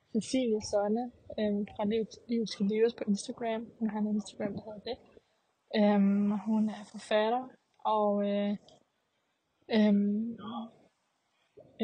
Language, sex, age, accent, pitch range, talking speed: Danish, female, 20-39, native, 205-225 Hz, 115 wpm